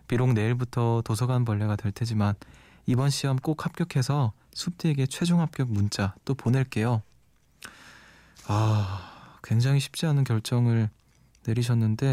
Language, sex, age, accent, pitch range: Korean, male, 20-39, native, 115-140 Hz